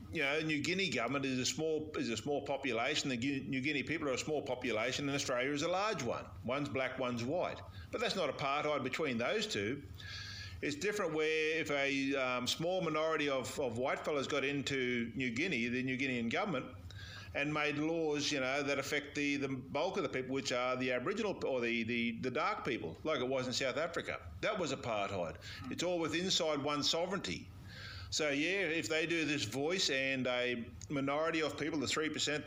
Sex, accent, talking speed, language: male, Australian, 205 wpm, English